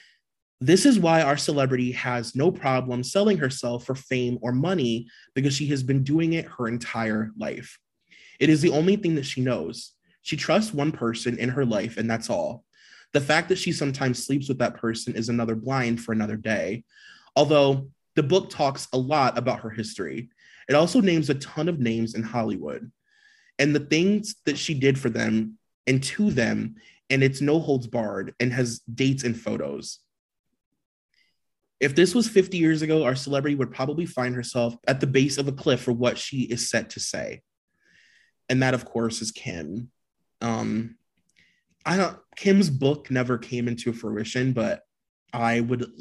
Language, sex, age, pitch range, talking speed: English, male, 20-39, 120-150 Hz, 180 wpm